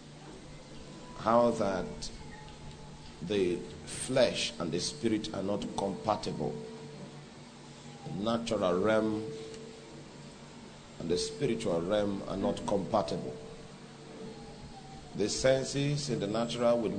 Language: English